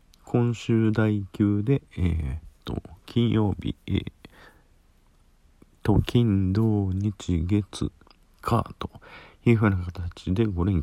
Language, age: Japanese, 50-69